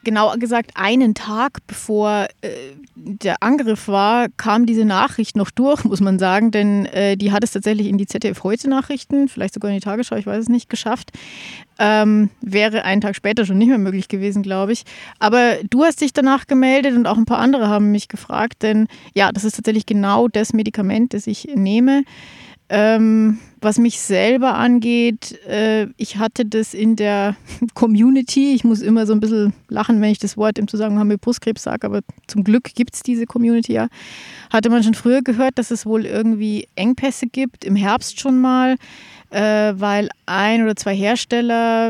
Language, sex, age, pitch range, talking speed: German, female, 30-49, 205-235 Hz, 185 wpm